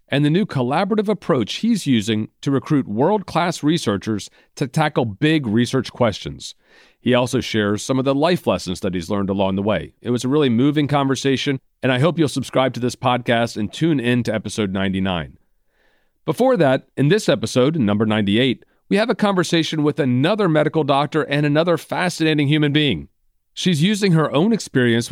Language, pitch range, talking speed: English, 110-155 Hz, 180 wpm